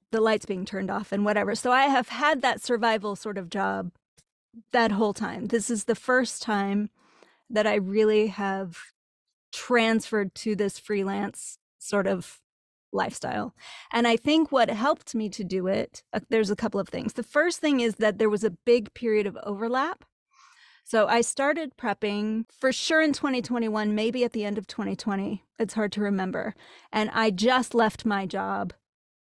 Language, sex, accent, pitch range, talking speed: English, female, American, 205-245 Hz, 175 wpm